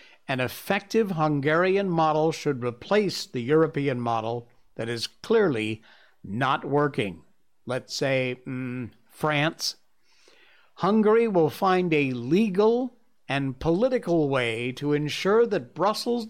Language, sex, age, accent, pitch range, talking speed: English, male, 60-79, American, 135-205 Hz, 110 wpm